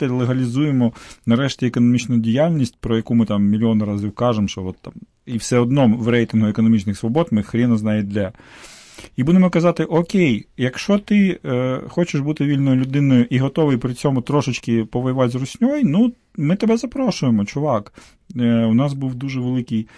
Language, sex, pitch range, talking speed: Ukrainian, male, 110-135 Hz, 165 wpm